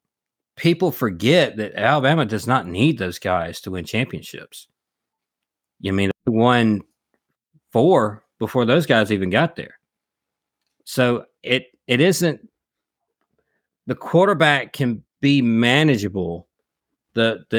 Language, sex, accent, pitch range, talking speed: English, male, American, 110-140 Hz, 120 wpm